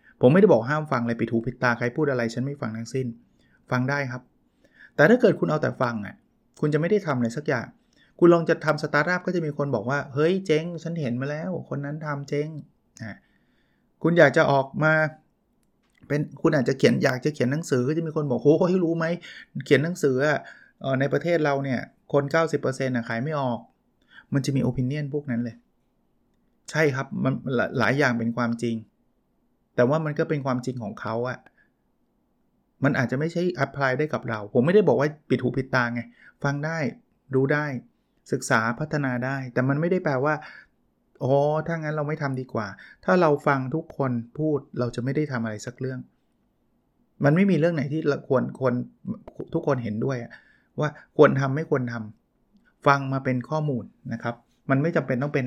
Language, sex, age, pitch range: Thai, male, 20-39, 125-155 Hz